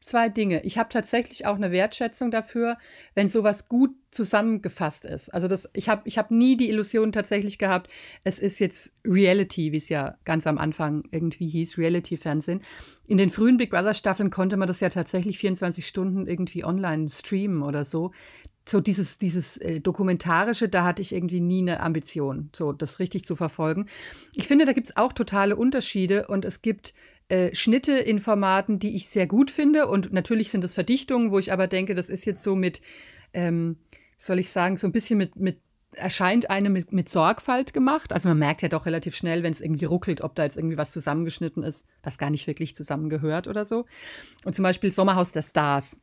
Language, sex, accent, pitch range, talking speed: German, female, German, 165-210 Hz, 195 wpm